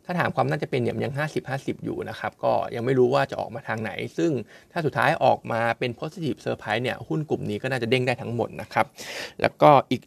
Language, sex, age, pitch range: Thai, male, 20-39, 115-145 Hz